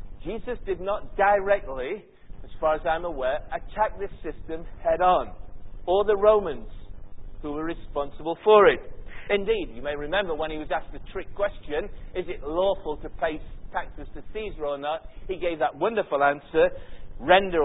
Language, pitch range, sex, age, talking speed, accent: English, 155-230 Hz, male, 50-69, 165 wpm, British